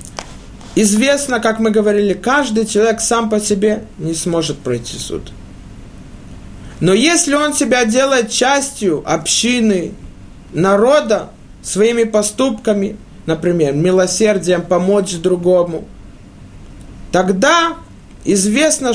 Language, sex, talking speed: Russian, male, 90 wpm